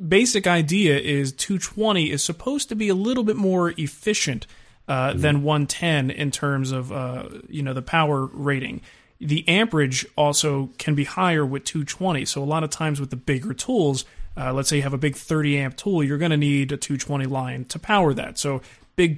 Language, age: English, 30-49